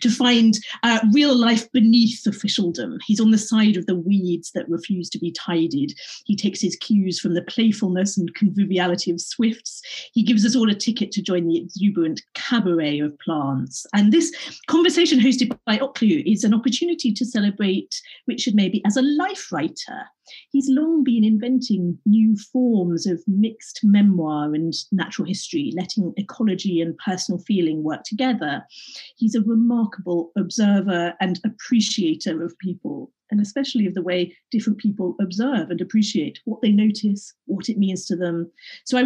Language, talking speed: English, 165 wpm